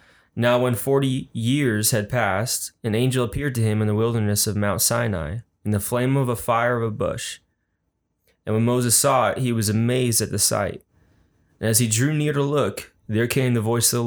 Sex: male